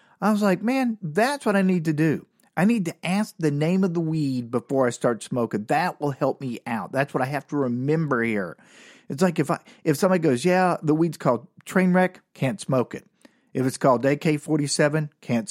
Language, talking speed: English, 215 wpm